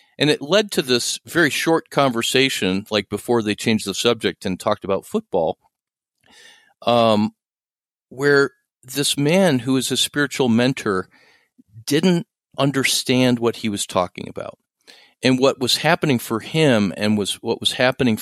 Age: 50-69